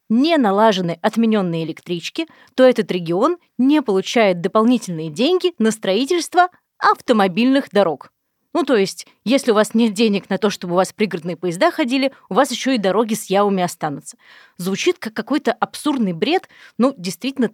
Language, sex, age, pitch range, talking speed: Russian, female, 30-49, 195-265 Hz, 155 wpm